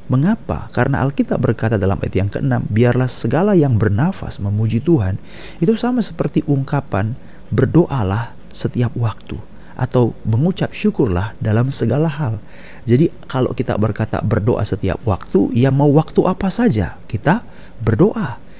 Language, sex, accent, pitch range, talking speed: Indonesian, male, native, 105-150 Hz, 130 wpm